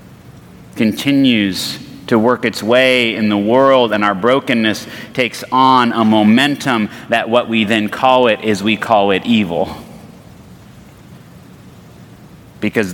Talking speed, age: 125 wpm, 30-49